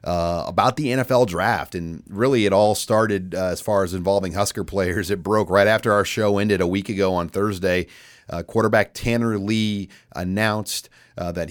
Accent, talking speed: American, 190 wpm